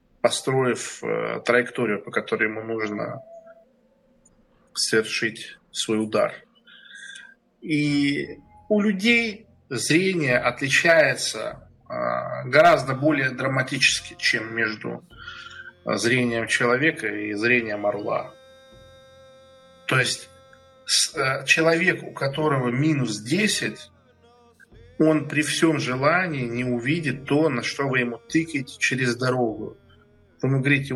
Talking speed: 95 wpm